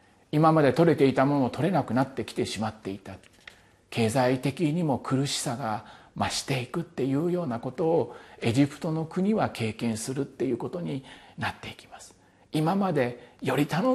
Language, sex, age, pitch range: Japanese, male, 40-59, 120-170 Hz